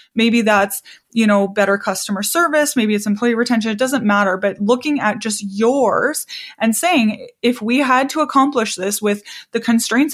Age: 20-39